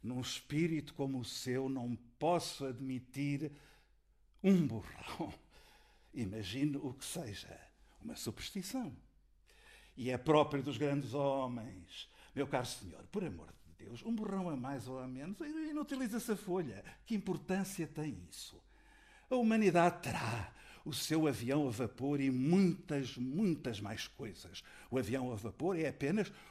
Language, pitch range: Portuguese, 125-180 Hz